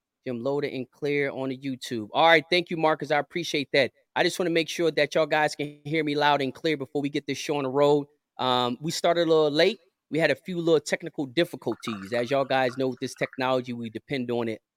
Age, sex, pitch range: 30-49, male, 135-170 Hz